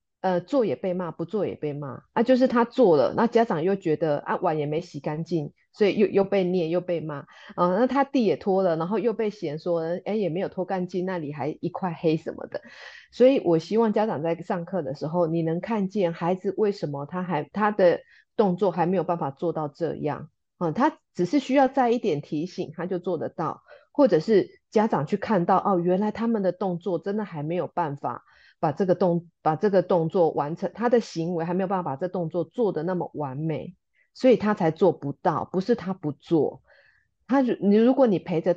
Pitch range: 160-205 Hz